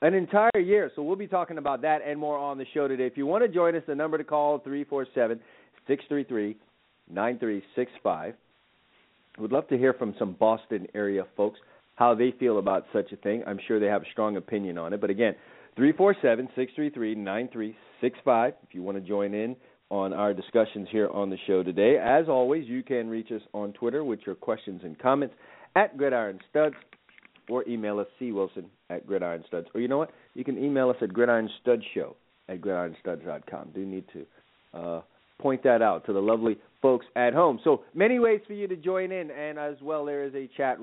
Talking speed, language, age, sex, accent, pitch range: 190 wpm, English, 40-59, male, American, 100-140 Hz